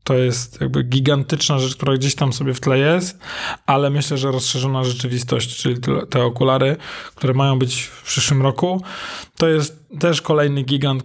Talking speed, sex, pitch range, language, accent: 170 wpm, male, 130-160 Hz, Polish, native